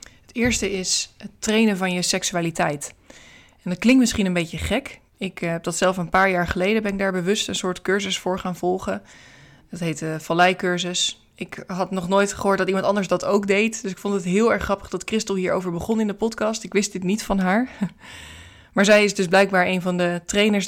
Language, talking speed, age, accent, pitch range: Dutch, 220 wpm, 20-39, Dutch, 175-200 Hz